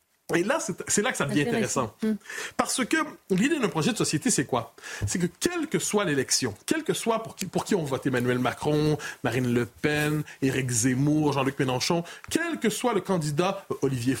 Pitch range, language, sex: 160-235 Hz, French, male